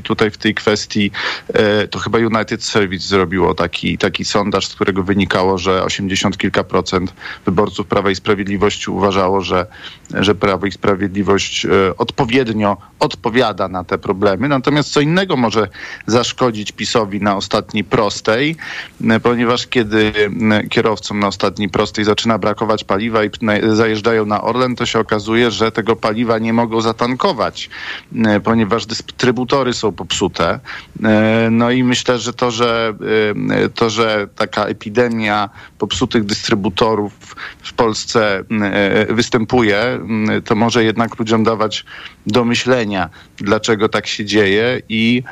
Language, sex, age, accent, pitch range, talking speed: Polish, male, 40-59, native, 105-115 Hz, 125 wpm